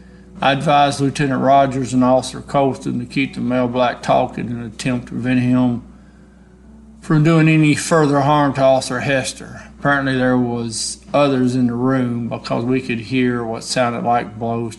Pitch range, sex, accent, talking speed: 120-140 Hz, male, American, 170 wpm